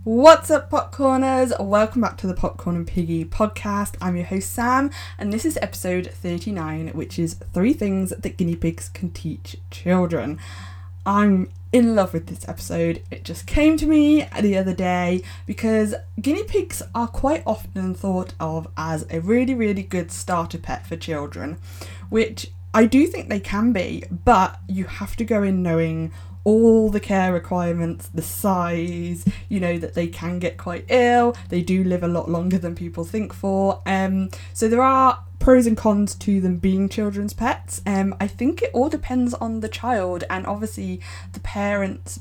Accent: British